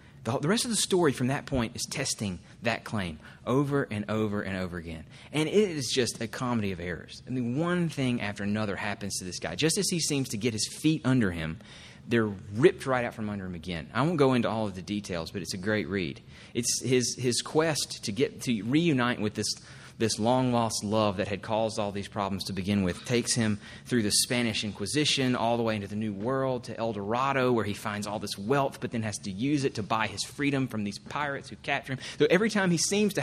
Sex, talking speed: male, 240 wpm